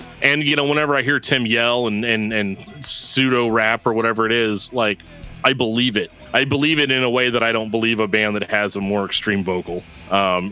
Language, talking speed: English, 230 wpm